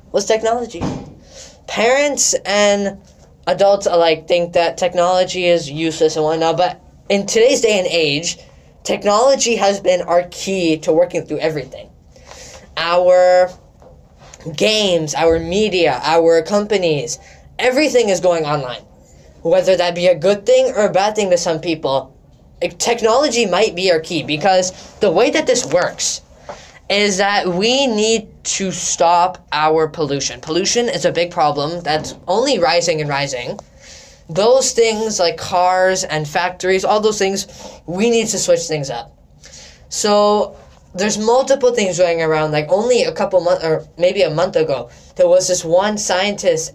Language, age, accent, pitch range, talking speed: English, 10-29, American, 165-215 Hz, 150 wpm